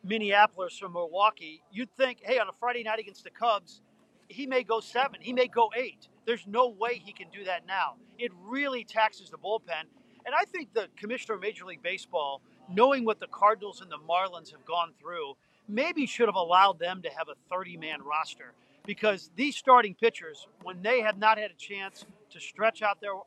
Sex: male